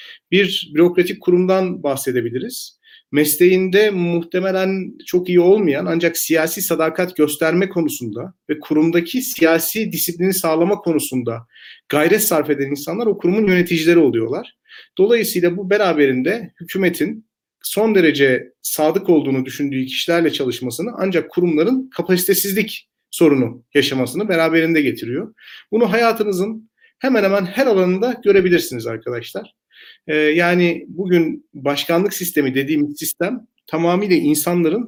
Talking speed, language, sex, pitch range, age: 105 wpm, Turkish, male, 145-195 Hz, 40-59